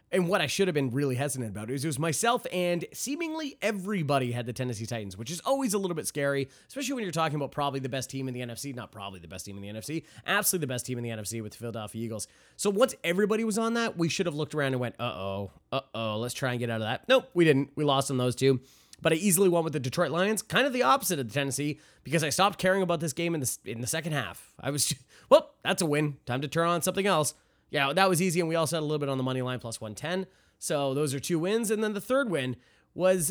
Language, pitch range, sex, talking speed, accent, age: English, 130-190 Hz, male, 280 wpm, American, 20-39